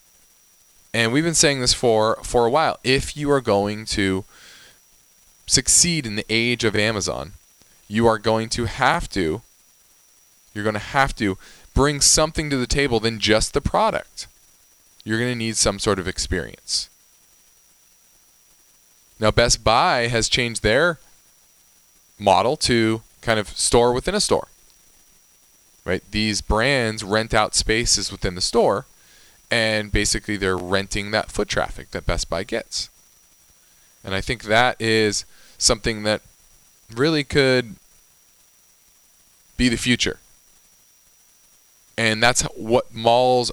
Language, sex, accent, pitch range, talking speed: English, male, American, 100-125 Hz, 135 wpm